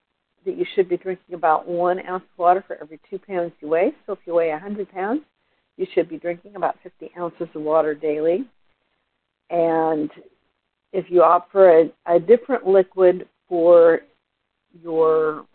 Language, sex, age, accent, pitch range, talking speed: English, female, 50-69, American, 160-185 Hz, 165 wpm